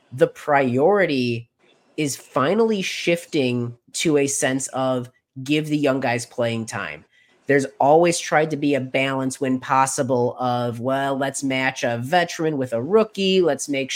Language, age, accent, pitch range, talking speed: English, 30-49, American, 125-155 Hz, 150 wpm